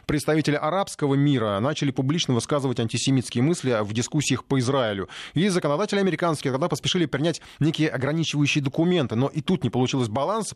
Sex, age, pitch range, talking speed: male, 20-39, 115-155 Hz, 155 wpm